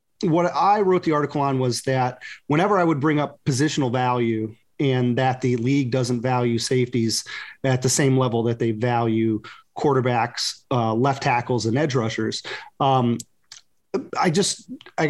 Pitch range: 125-160 Hz